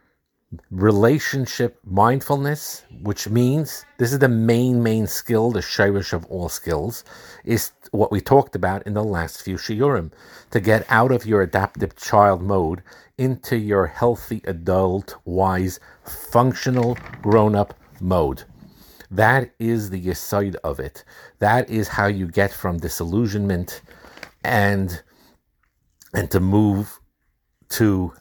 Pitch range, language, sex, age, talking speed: 90-110 Hz, English, male, 50-69, 130 wpm